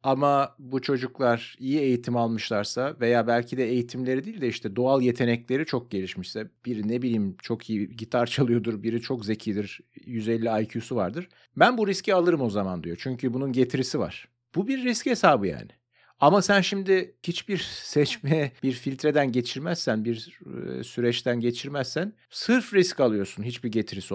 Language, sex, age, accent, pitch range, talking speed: Turkish, male, 50-69, native, 110-145 Hz, 155 wpm